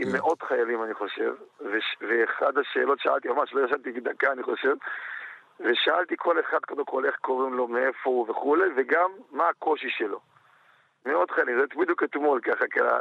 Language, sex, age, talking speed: Hebrew, male, 50-69, 155 wpm